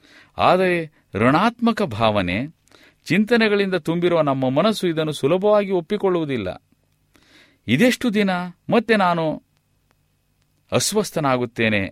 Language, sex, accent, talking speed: Kannada, male, native, 75 wpm